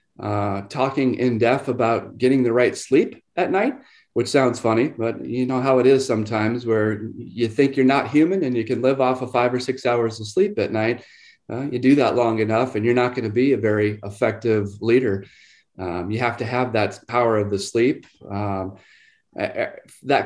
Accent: American